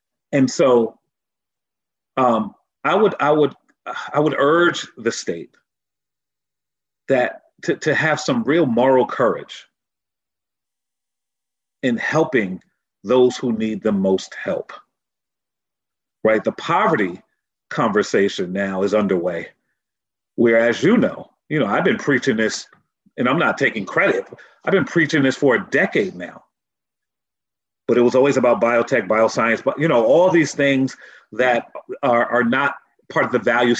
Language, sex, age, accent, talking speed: English, male, 40-59, American, 140 wpm